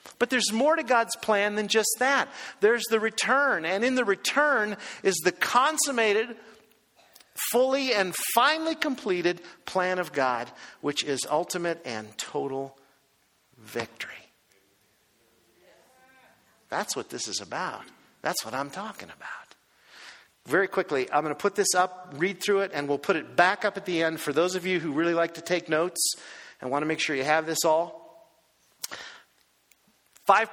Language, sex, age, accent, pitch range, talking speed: English, male, 50-69, American, 150-200 Hz, 160 wpm